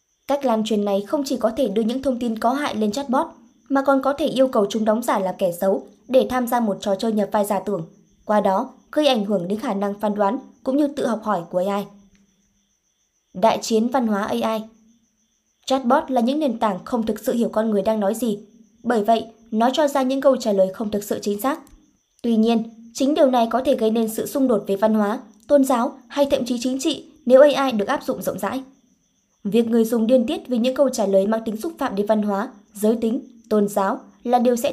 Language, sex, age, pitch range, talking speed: Vietnamese, male, 20-39, 210-260 Hz, 245 wpm